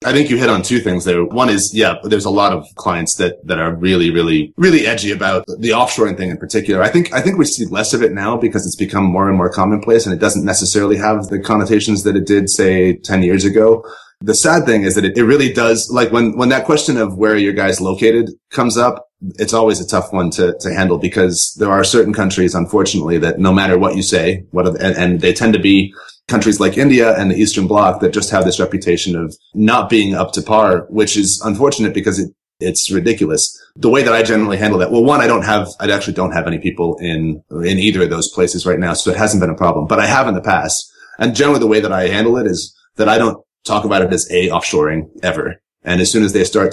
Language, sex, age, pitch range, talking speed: English, male, 30-49, 90-115 Hz, 250 wpm